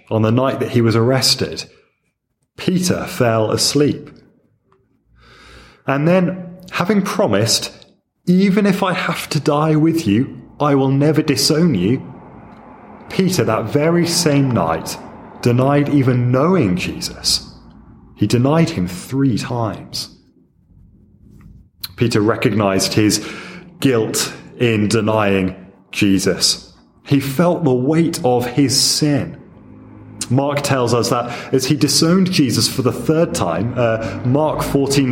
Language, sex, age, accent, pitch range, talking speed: English, male, 30-49, British, 110-155 Hz, 120 wpm